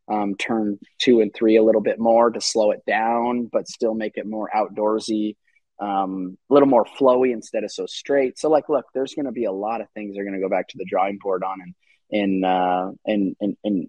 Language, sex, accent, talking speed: English, male, American, 240 wpm